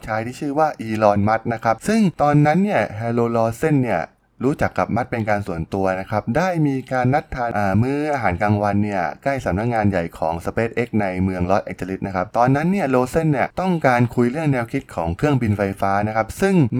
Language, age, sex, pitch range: Thai, 20-39, male, 100-140 Hz